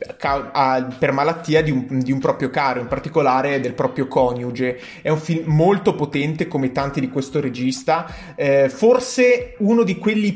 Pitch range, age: 140-180 Hz, 30-49